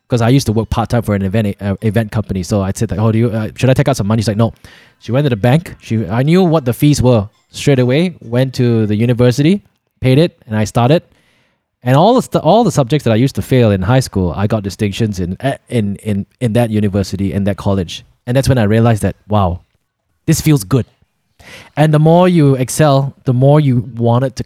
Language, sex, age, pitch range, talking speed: English, male, 20-39, 110-155 Hz, 245 wpm